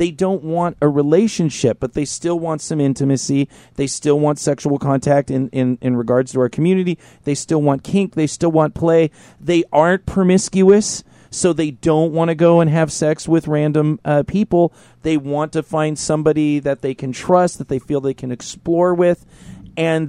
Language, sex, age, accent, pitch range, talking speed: English, male, 40-59, American, 125-160 Hz, 190 wpm